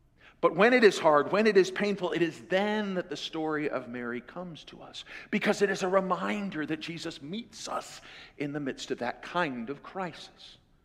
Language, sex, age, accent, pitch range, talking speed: English, male, 50-69, American, 160-210 Hz, 205 wpm